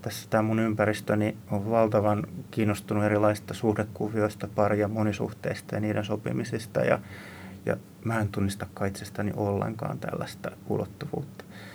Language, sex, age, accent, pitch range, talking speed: Finnish, male, 30-49, native, 105-115 Hz, 115 wpm